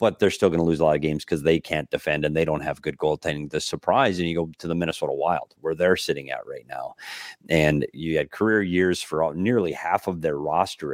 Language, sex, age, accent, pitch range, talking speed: English, male, 30-49, American, 85-115 Hz, 250 wpm